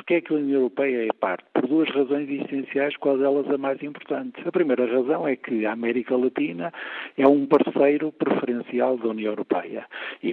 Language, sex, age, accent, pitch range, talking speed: Portuguese, male, 60-79, Portuguese, 120-160 Hz, 200 wpm